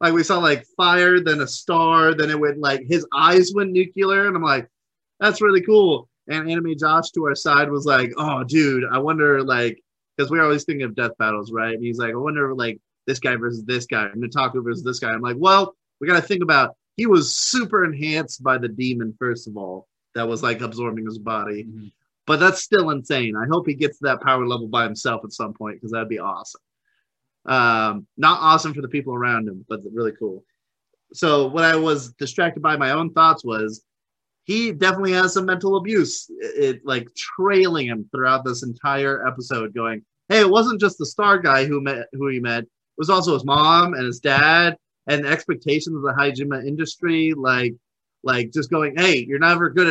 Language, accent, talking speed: English, American, 210 wpm